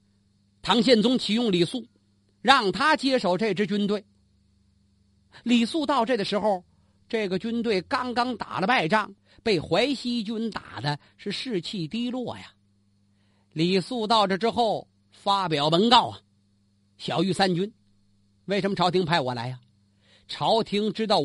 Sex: male